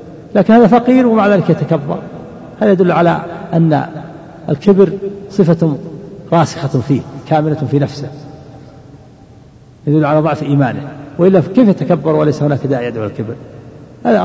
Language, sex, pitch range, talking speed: Arabic, male, 135-170 Hz, 130 wpm